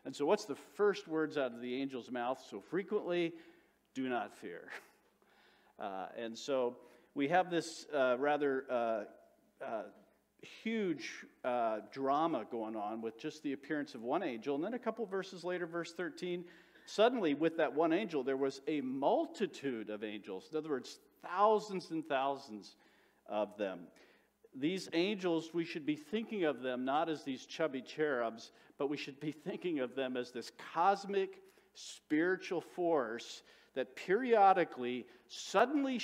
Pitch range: 135-200 Hz